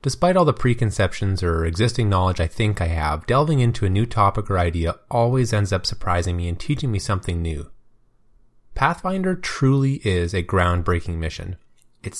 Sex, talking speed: male, 170 wpm